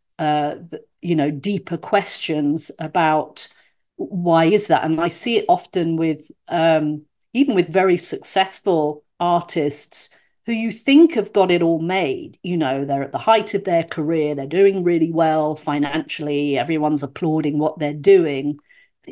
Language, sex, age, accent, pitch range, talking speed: English, female, 50-69, British, 160-215 Hz, 155 wpm